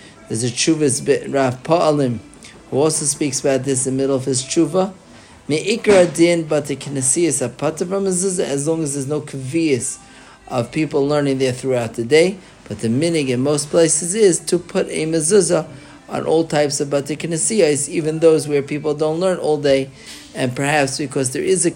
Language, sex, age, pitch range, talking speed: English, male, 40-59, 130-165 Hz, 155 wpm